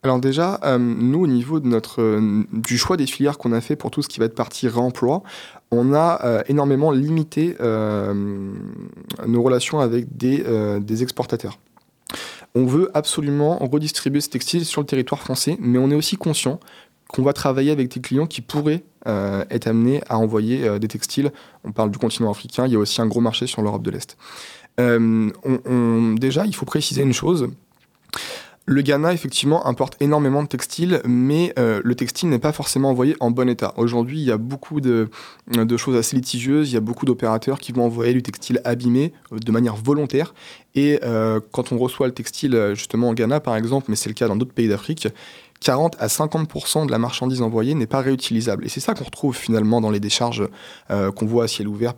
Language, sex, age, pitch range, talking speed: French, male, 20-39, 115-145 Hz, 205 wpm